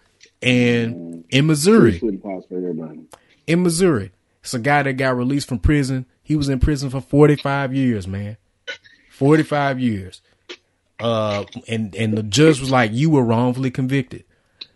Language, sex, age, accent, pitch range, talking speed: English, male, 30-49, American, 100-130 Hz, 145 wpm